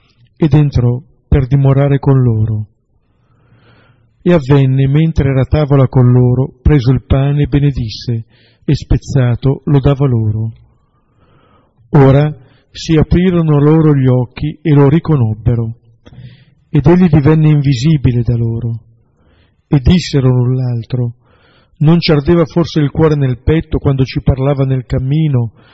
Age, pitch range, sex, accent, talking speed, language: 50-69, 120-150 Hz, male, native, 130 wpm, Italian